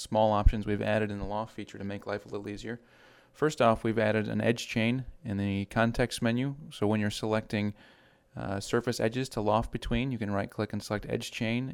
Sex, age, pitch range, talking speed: male, 30-49, 105-115 Hz, 220 wpm